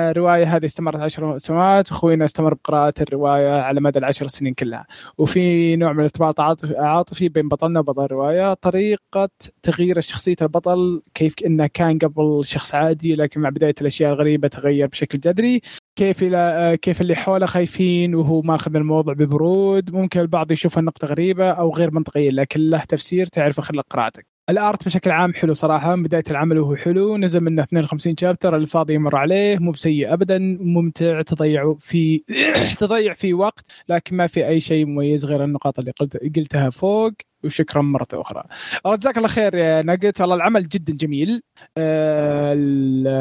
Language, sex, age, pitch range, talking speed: Arabic, male, 20-39, 145-175 Hz, 160 wpm